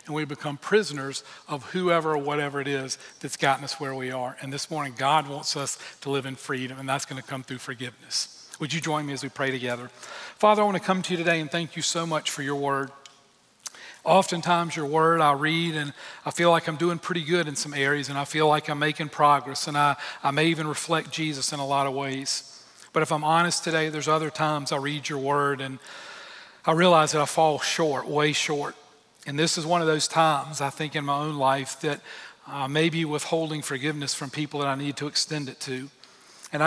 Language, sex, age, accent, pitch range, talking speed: English, male, 40-59, American, 140-160 Hz, 230 wpm